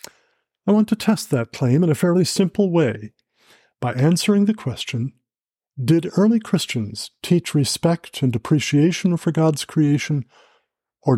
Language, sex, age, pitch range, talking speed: English, male, 50-69, 125-165 Hz, 140 wpm